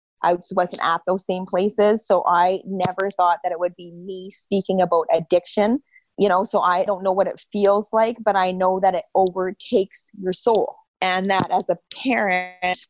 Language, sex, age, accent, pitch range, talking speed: English, female, 30-49, American, 180-215 Hz, 190 wpm